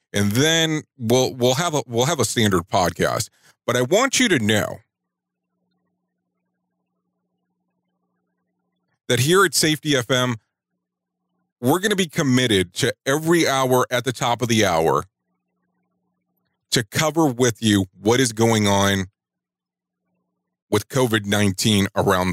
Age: 40-59